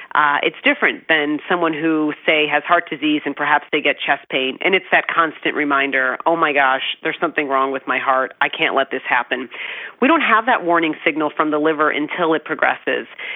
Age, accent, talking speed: 40-59, American, 210 wpm